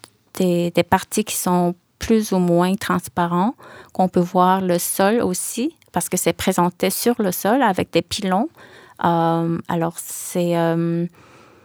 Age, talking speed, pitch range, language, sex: 30-49, 150 wpm, 180-215 Hz, French, female